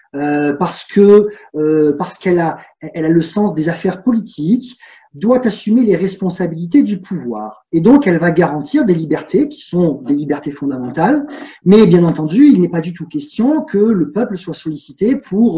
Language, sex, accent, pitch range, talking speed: French, male, French, 155-210 Hz, 180 wpm